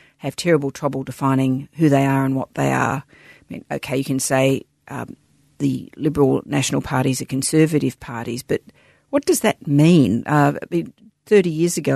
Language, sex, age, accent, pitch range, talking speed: English, female, 50-69, Australian, 135-170 Hz, 170 wpm